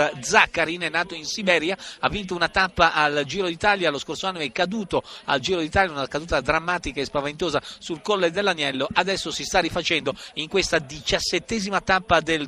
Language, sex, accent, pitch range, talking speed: Italian, male, native, 155-190 Hz, 180 wpm